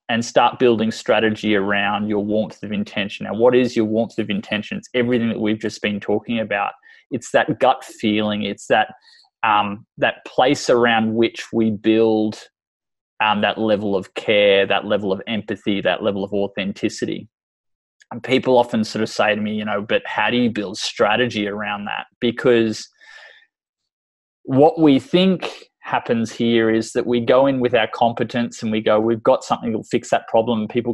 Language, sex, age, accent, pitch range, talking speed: English, male, 20-39, Australian, 105-120 Hz, 180 wpm